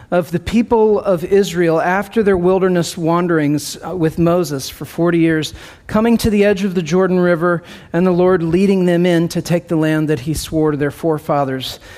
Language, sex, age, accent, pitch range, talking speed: English, male, 40-59, American, 145-190 Hz, 190 wpm